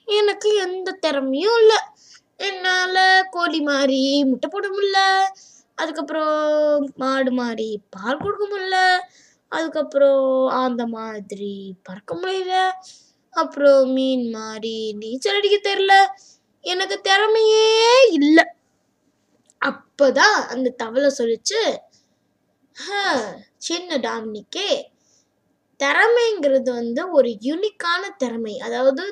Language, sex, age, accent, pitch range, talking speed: Tamil, female, 20-39, native, 250-370 Hz, 80 wpm